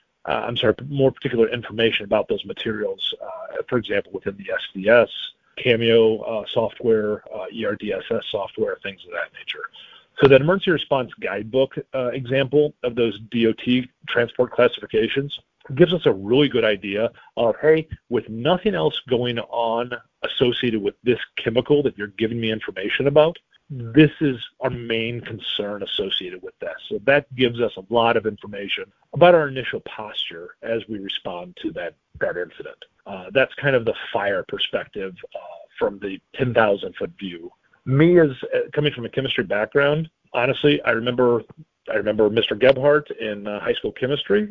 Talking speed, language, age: 160 wpm, English, 40-59